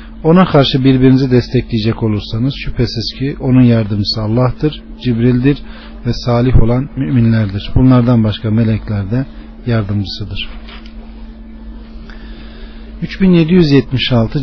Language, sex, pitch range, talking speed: Turkish, male, 115-150 Hz, 85 wpm